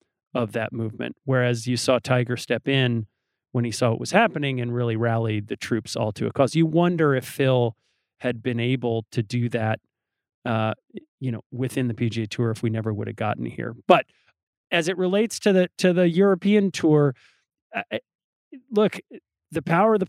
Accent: American